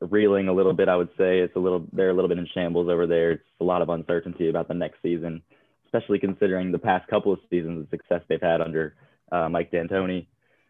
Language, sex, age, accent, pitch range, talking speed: English, male, 20-39, American, 85-95 Hz, 235 wpm